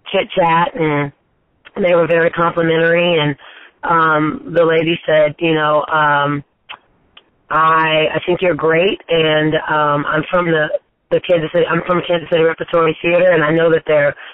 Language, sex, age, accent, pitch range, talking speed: English, female, 30-49, American, 155-185 Hz, 165 wpm